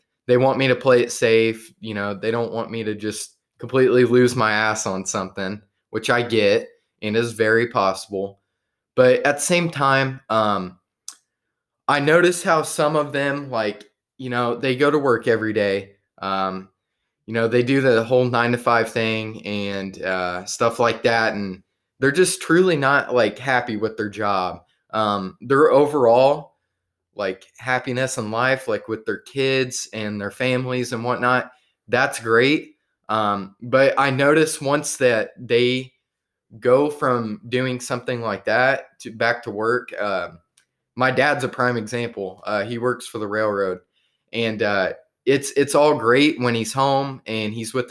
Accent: American